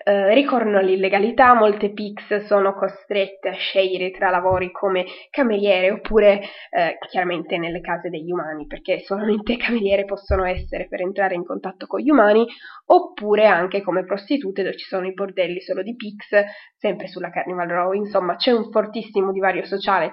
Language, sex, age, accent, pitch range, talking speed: Italian, female, 20-39, native, 190-225 Hz, 165 wpm